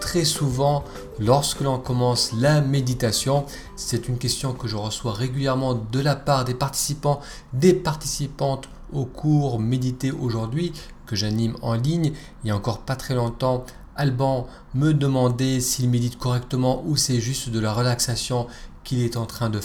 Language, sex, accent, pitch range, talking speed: French, male, French, 115-150 Hz, 160 wpm